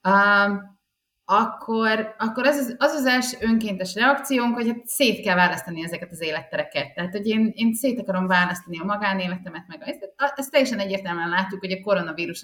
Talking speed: 175 wpm